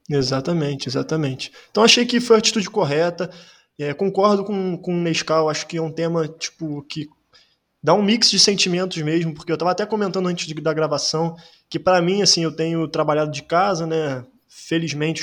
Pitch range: 155-190 Hz